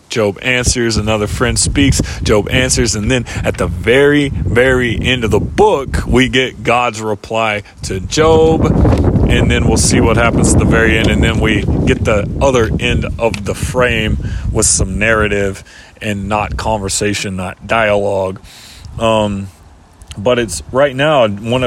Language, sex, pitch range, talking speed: English, male, 100-125 Hz, 160 wpm